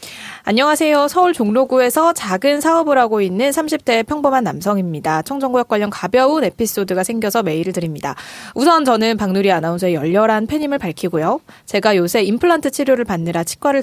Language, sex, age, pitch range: Korean, female, 20-39, 185-285 Hz